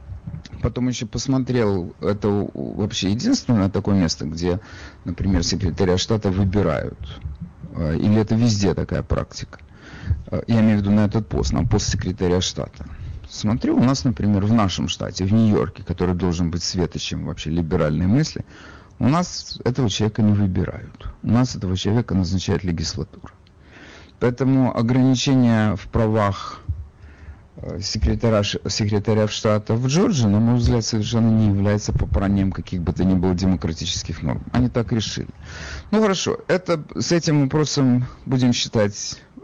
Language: Russian